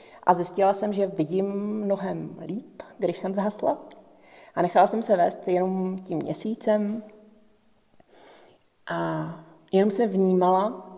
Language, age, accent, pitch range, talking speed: Czech, 30-49, native, 175-205 Hz, 120 wpm